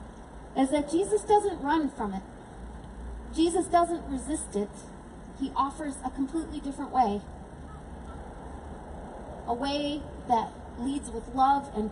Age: 40-59